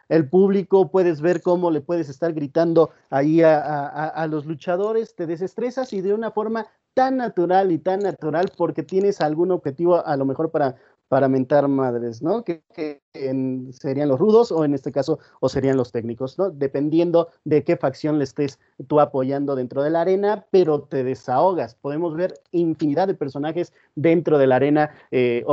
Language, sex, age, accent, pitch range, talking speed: Spanish, male, 30-49, Mexican, 135-170 Hz, 180 wpm